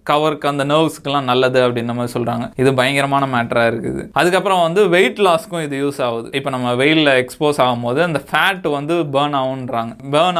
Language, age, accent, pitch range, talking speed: Tamil, 20-39, native, 130-170 Hz, 165 wpm